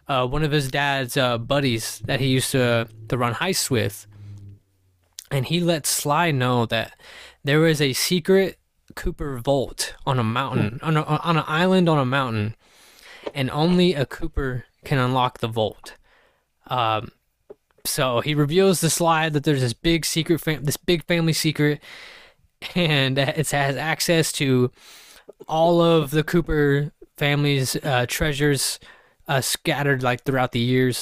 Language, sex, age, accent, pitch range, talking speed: English, male, 20-39, American, 125-155 Hz, 155 wpm